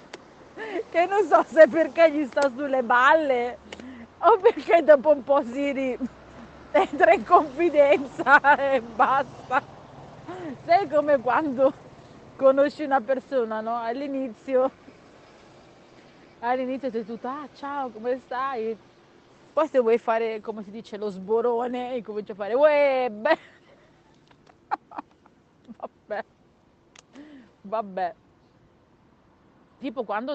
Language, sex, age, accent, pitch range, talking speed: Italian, female, 30-49, native, 230-300 Hz, 110 wpm